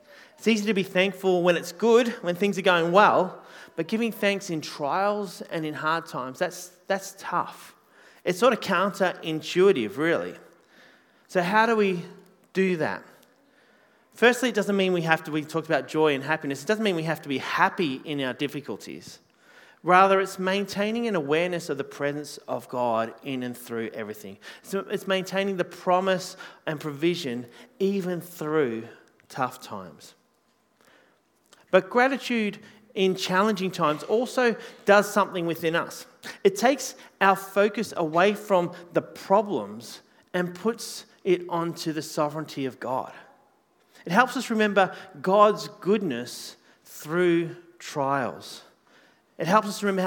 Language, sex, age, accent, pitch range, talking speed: English, male, 30-49, Australian, 155-200 Hz, 145 wpm